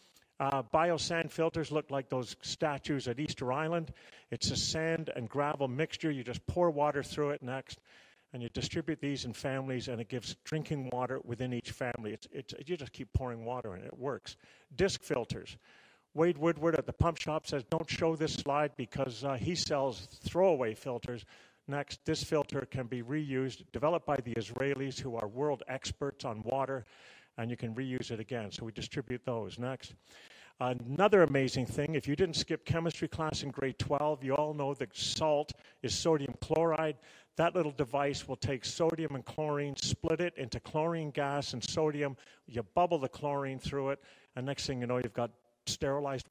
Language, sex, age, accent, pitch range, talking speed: English, male, 50-69, American, 125-155 Hz, 180 wpm